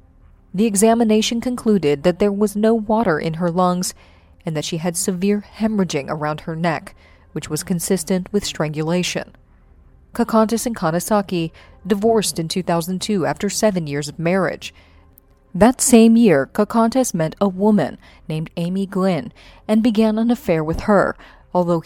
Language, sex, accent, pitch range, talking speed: English, female, American, 160-220 Hz, 145 wpm